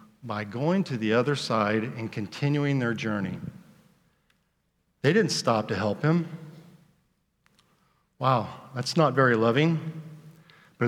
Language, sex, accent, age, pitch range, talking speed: English, male, American, 50-69, 130-205 Hz, 120 wpm